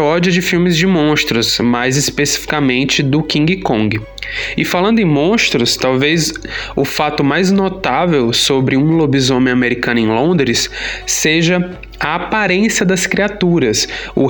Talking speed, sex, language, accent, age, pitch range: 130 wpm, male, Portuguese, Brazilian, 20-39, 135-185 Hz